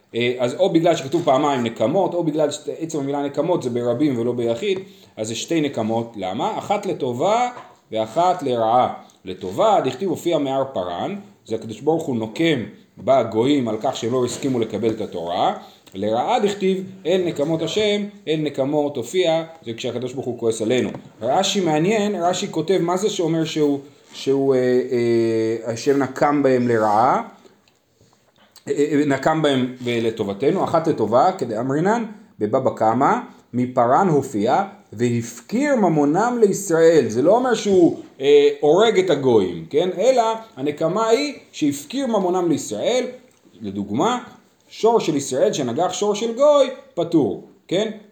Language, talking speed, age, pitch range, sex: Hebrew, 135 wpm, 30-49, 125-205 Hz, male